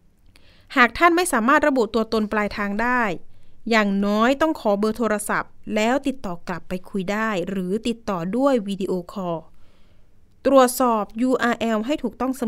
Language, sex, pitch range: Thai, female, 195-255 Hz